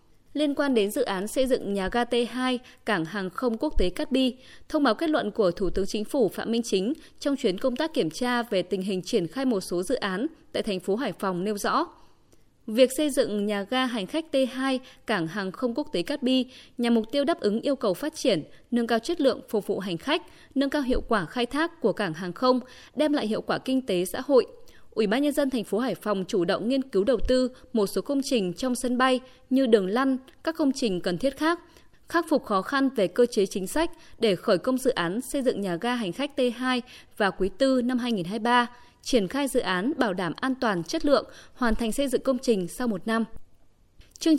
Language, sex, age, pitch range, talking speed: Vietnamese, female, 20-39, 210-270 Hz, 240 wpm